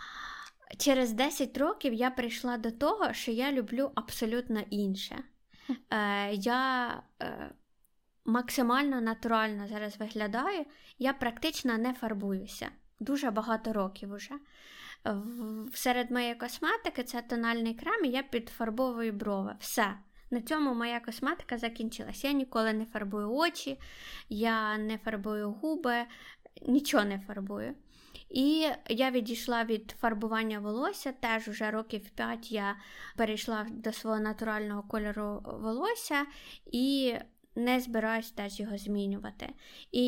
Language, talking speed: Ukrainian, 115 wpm